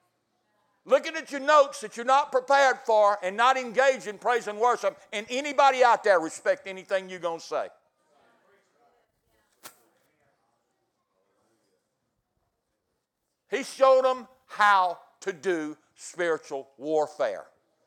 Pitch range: 200-270 Hz